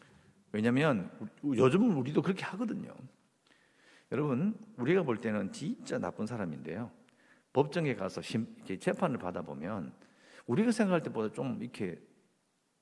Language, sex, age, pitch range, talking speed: English, male, 50-69, 150-235 Hz, 100 wpm